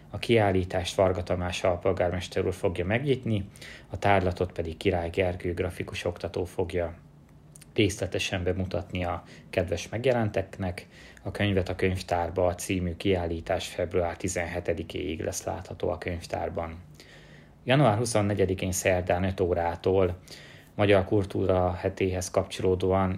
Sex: male